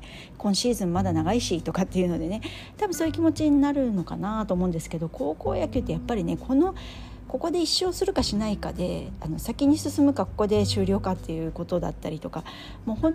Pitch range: 155-240 Hz